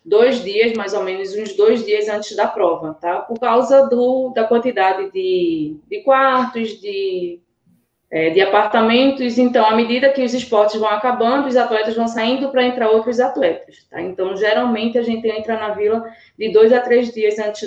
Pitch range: 195-245 Hz